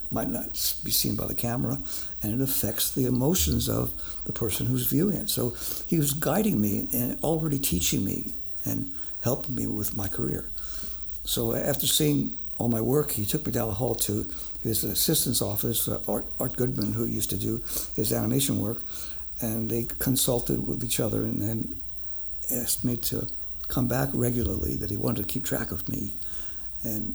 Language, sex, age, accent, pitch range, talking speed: English, male, 60-79, American, 95-120 Hz, 180 wpm